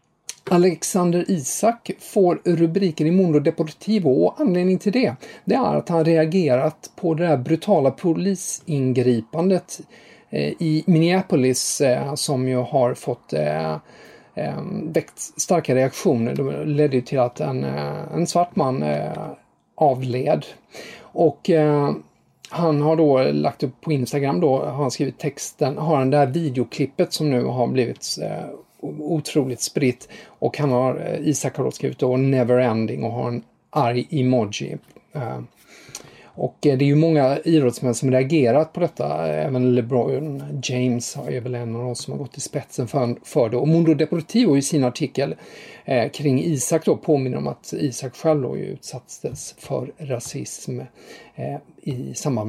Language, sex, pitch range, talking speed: English, male, 125-165 Hz, 140 wpm